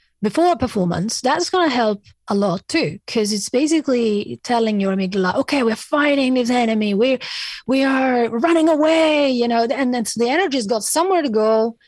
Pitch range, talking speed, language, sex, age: 190-260 Hz, 190 wpm, English, female, 30-49